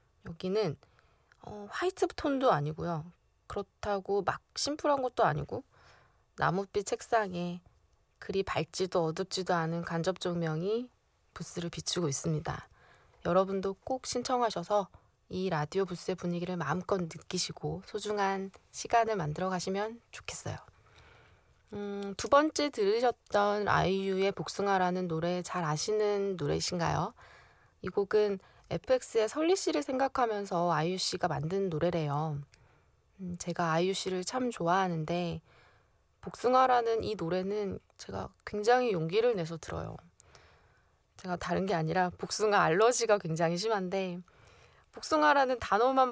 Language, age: Korean, 20-39